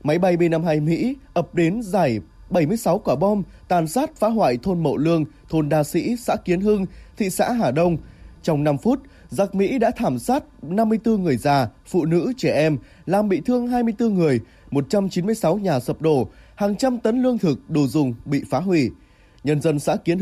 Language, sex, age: Vietnamese, male, 20-39